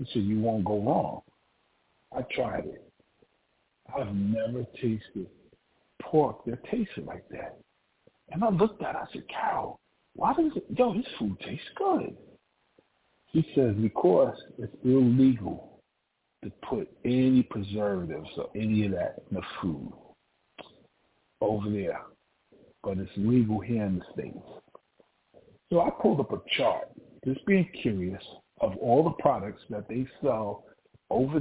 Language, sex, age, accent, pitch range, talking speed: English, male, 60-79, American, 105-130 Hz, 145 wpm